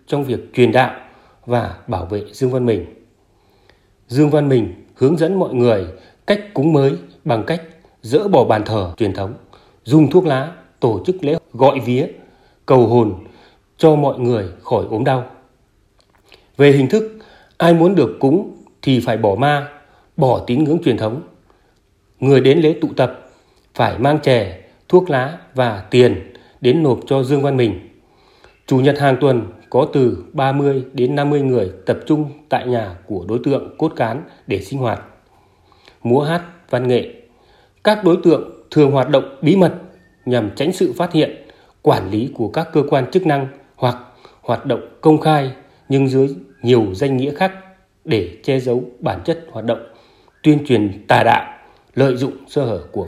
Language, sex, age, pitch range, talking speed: Vietnamese, male, 30-49, 120-150 Hz, 170 wpm